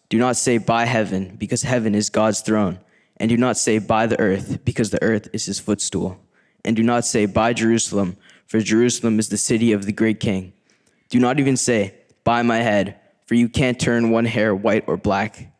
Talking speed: 210 wpm